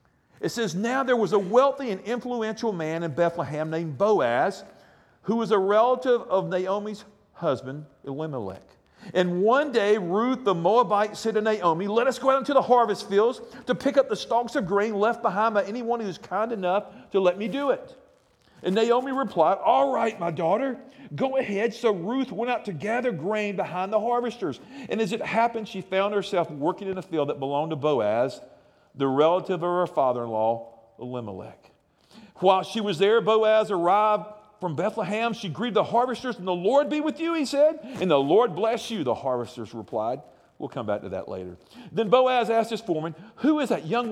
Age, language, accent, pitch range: 50-69, English, American, 175-235 Hz